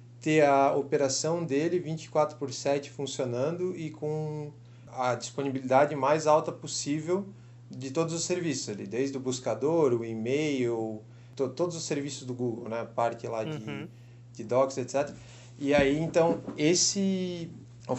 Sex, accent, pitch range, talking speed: male, Brazilian, 125-155 Hz, 145 wpm